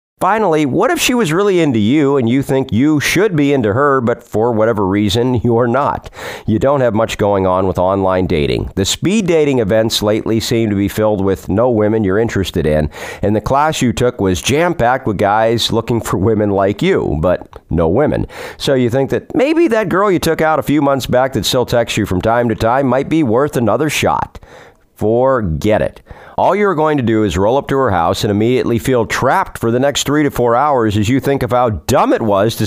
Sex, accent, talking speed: male, American, 225 wpm